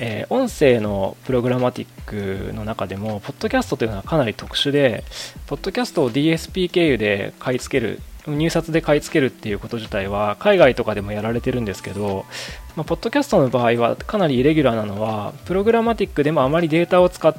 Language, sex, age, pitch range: Japanese, male, 20-39, 110-180 Hz